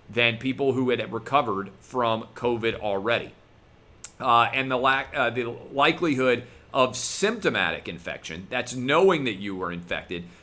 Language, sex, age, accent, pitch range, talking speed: English, male, 40-59, American, 105-135 Hz, 140 wpm